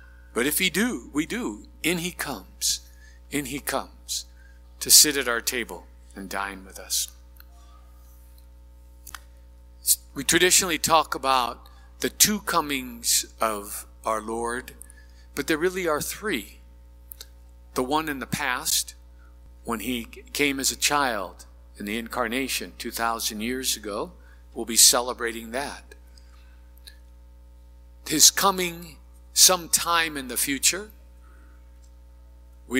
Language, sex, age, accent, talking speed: English, male, 50-69, American, 120 wpm